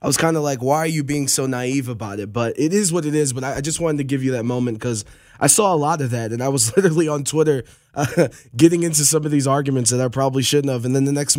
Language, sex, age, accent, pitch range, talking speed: English, male, 20-39, American, 120-145 Hz, 305 wpm